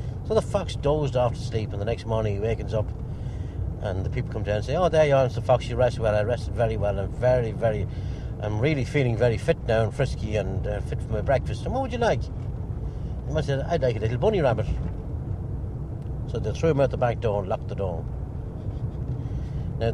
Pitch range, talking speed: 105-130 Hz, 230 wpm